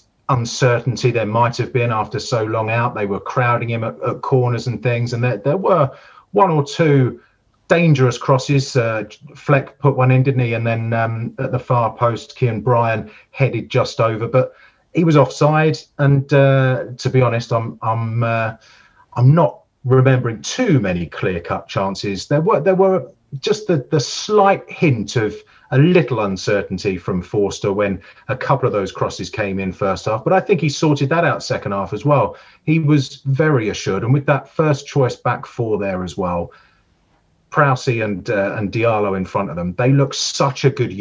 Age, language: 30-49, English